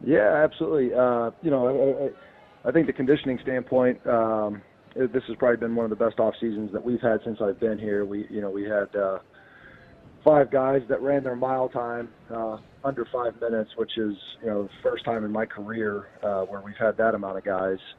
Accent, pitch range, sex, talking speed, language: American, 105-120 Hz, male, 220 wpm, English